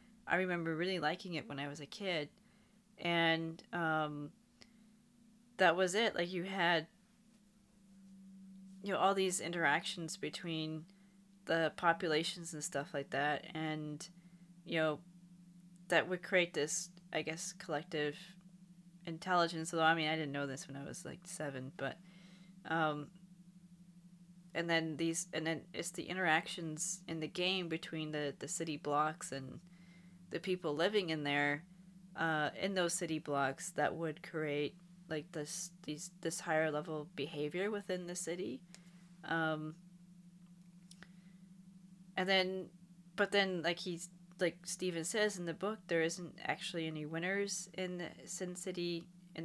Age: 20-39